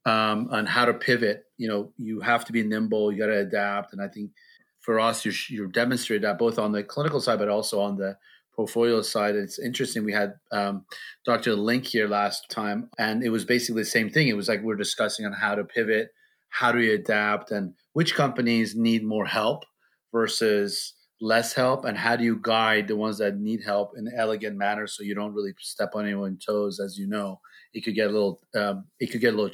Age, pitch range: 30-49, 105-120 Hz